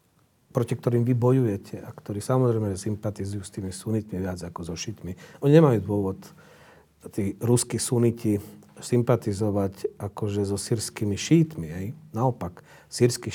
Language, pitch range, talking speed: Slovak, 105-125 Hz, 130 wpm